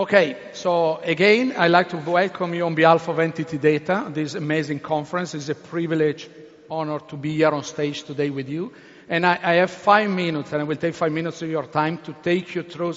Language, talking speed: English, 215 wpm